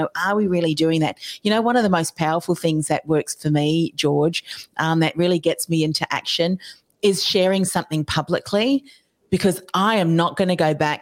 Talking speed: 200 wpm